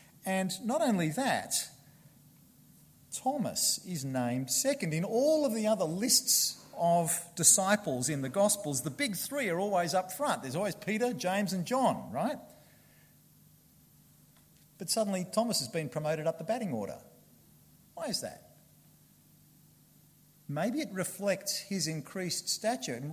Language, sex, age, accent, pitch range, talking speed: English, male, 50-69, Australian, 155-220 Hz, 135 wpm